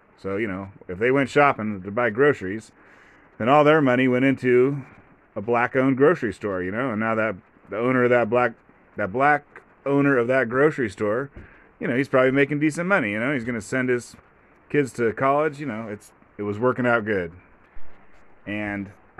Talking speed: 200 wpm